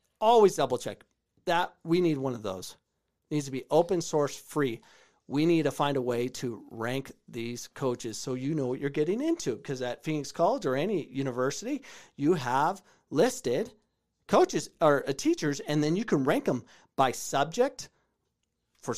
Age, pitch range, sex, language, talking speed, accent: 40-59, 130-170 Hz, male, English, 175 wpm, American